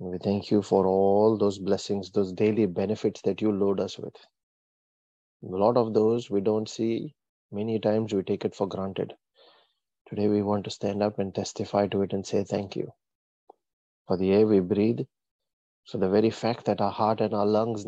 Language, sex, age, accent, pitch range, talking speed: English, male, 30-49, Indian, 100-110 Hz, 195 wpm